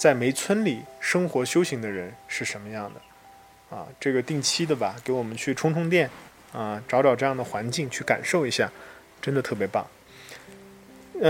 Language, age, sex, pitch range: Chinese, 20-39, male, 110-150 Hz